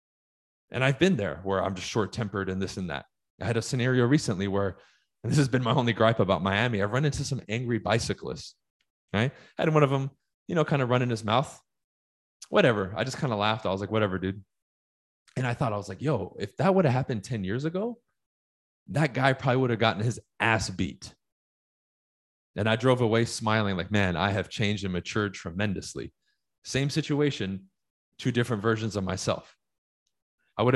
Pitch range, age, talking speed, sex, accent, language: 100-135 Hz, 20-39, 205 wpm, male, American, English